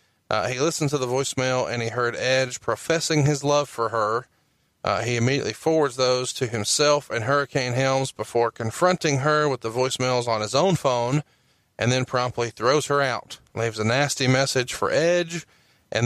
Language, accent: English, American